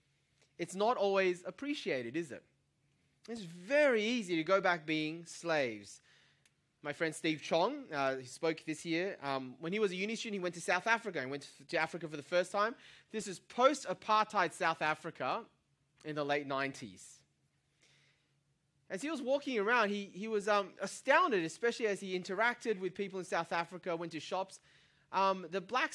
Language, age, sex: English, 20-39, male